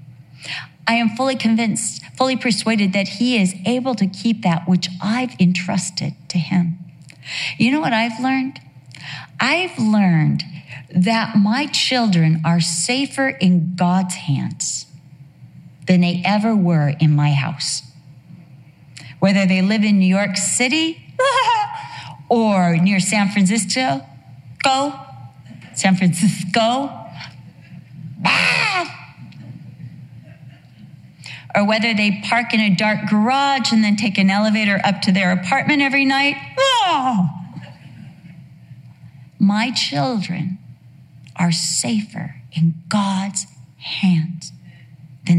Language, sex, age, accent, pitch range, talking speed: English, female, 40-59, American, 150-215 Hz, 105 wpm